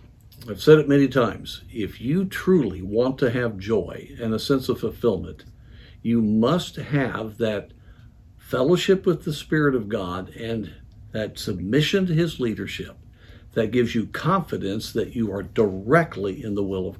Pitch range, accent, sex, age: 105-145 Hz, American, male, 60-79